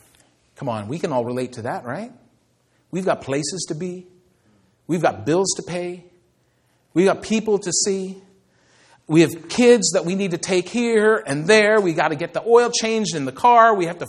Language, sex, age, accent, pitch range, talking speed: English, male, 40-59, American, 155-230 Hz, 205 wpm